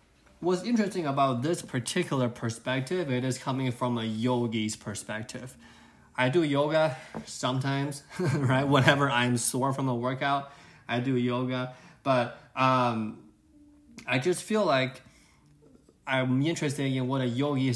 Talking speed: 130 wpm